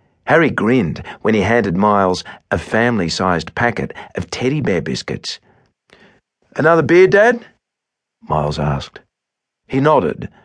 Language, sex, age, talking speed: English, male, 50-69, 115 wpm